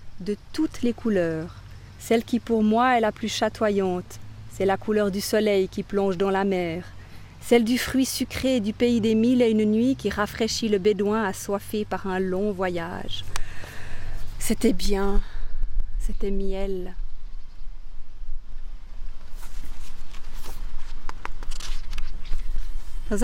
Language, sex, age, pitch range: French, female, 30-49, 195-250 Hz